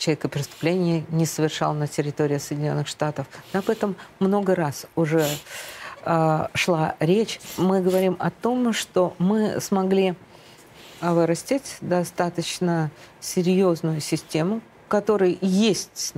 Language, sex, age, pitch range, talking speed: Russian, female, 50-69, 155-190 Hz, 110 wpm